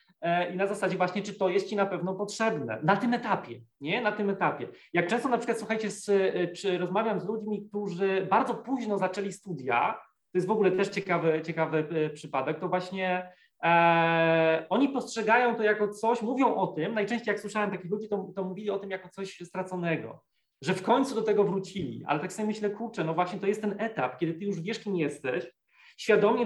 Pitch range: 175-210 Hz